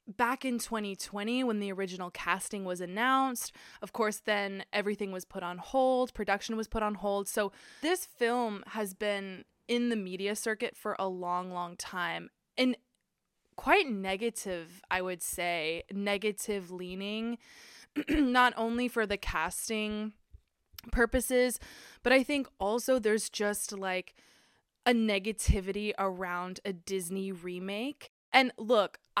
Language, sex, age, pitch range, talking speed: English, female, 20-39, 190-235 Hz, 135 wpm